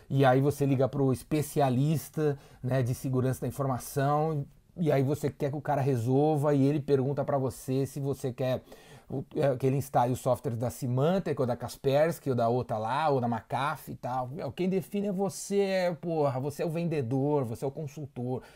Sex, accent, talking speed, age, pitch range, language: male, Brazilian, 190 wpm, 30-49, 125-145 Hz, Portuguese